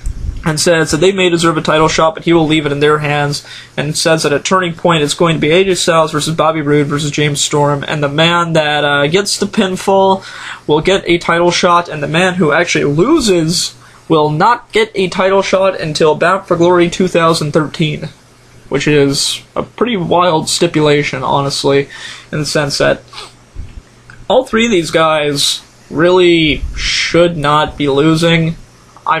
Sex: male